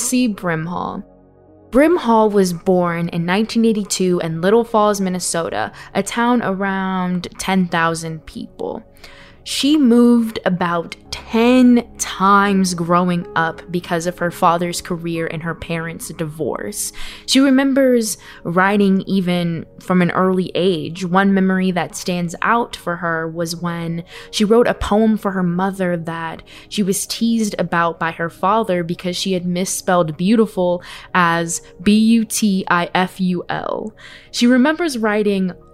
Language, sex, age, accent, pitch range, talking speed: English, female, 20-39, American, 170-210 Hz, 125 wpm